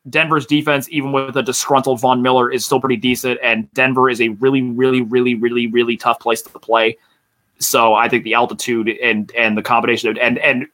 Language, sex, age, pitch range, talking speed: English, male, 20-39, 120-155 Hz, 205 wpm